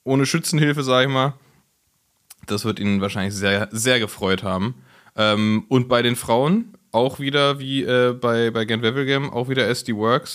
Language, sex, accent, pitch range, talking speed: German, male, German, 120-170 Hz, 175 wpm